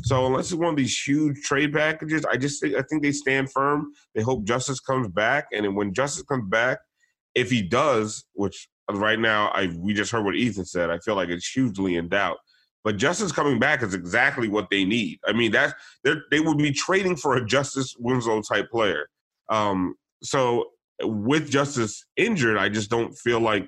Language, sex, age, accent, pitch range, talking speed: English, male, 30-49, American, 105-135 Hz, 205 wpm